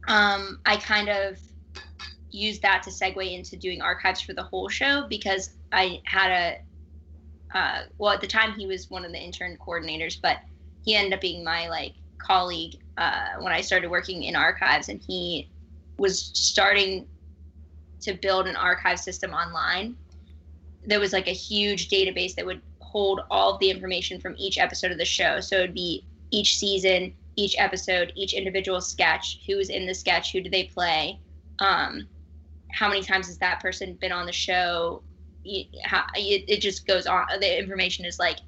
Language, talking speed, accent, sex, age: English, 175 wpm, American, female, 10-29